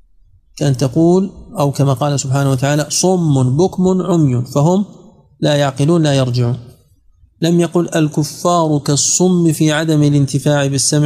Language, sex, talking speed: Arabic, male, 125 wpm